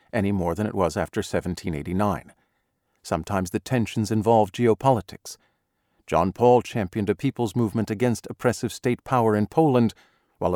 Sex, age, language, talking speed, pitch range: male, 50-69, English, 140 wpm, 100-125 Hz